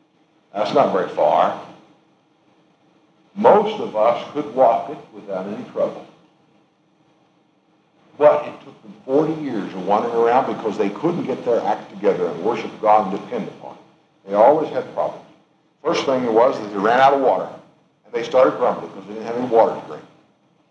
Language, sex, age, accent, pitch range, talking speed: English, male, 60-79, American, 140-185 Hz, 175 wpm